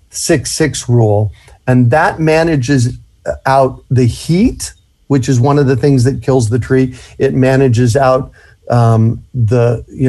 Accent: American